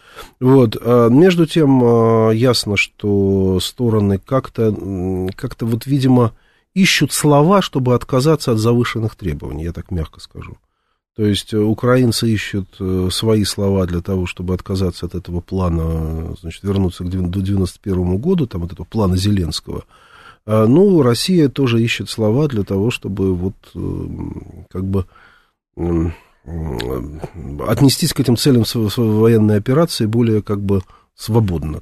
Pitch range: 90-115 Hz